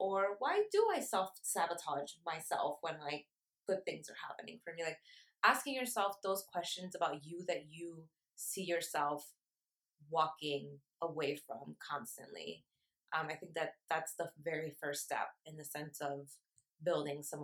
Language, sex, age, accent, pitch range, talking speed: English, female, 20-39, American, 155-185 Hz, 150 wpm